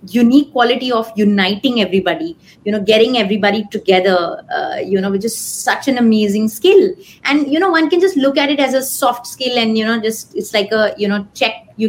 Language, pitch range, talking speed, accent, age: English, 195-250 Hz, 215 wpm, Indian, 20-39